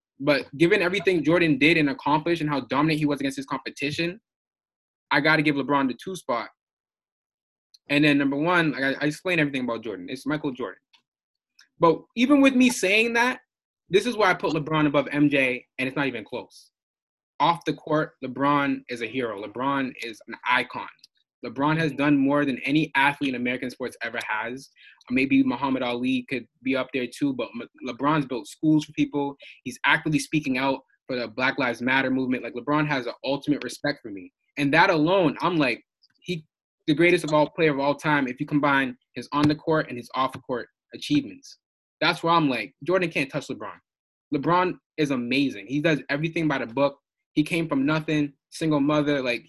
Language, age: English, 20-39